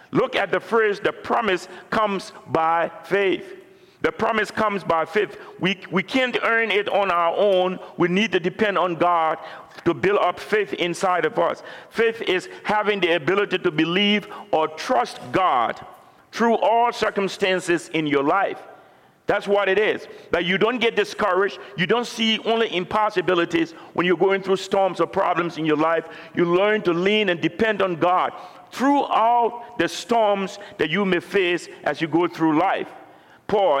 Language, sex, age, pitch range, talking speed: English, male, 50-69, 165-210 Hz, 170 wpm